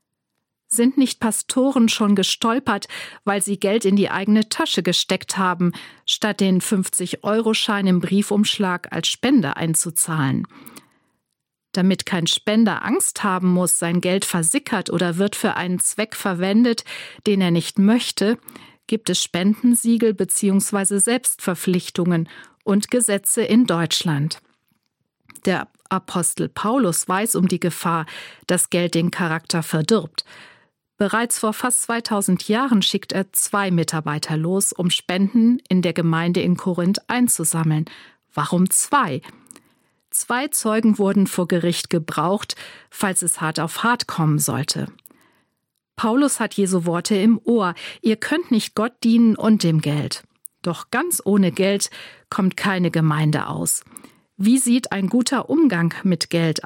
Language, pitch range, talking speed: German, 175-220 Hz, 130 wpm